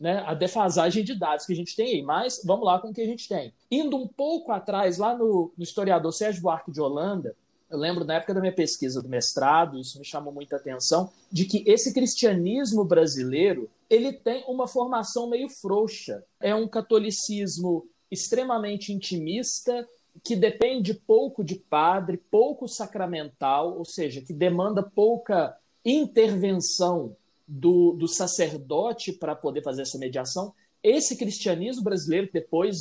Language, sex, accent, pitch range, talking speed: Portuguese, male, Brazilian, 150-215 Hz, 160 wpm